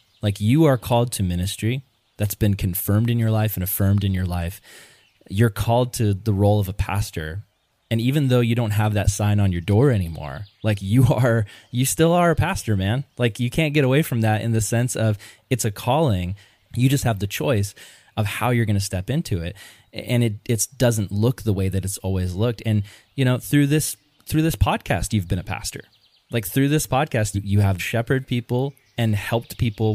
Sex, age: male, 20-39